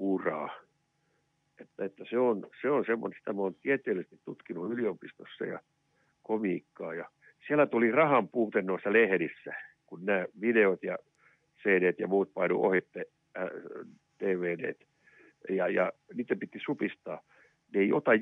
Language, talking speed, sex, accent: Finnish, 135 wpm, male, native